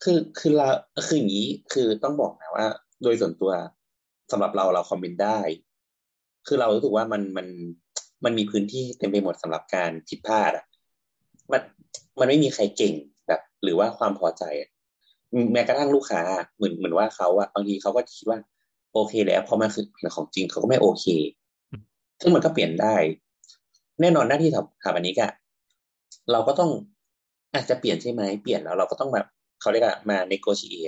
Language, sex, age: Thai, male, 30-49